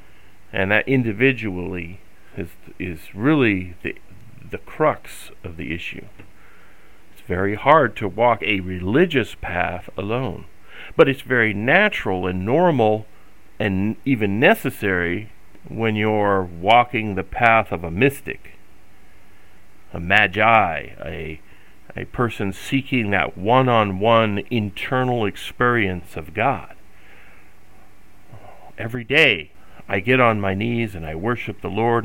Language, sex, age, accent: English, male, 40-59, American